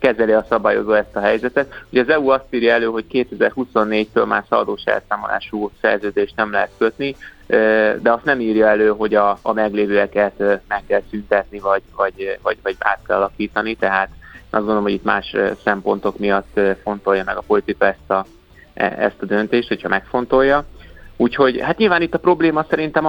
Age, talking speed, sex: 20-39, 170 wpm, male